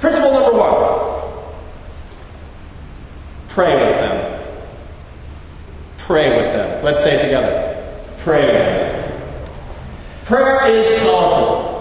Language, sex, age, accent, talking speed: English, male, 40-59, American, 95 wpm